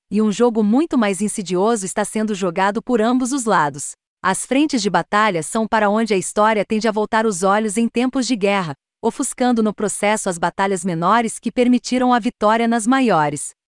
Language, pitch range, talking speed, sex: Portuguese, 205-255 Hz, 190 wpm, female